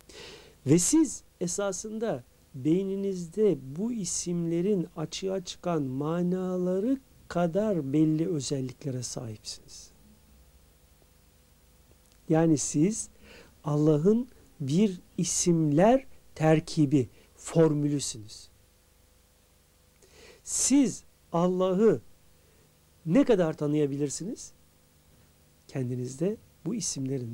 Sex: male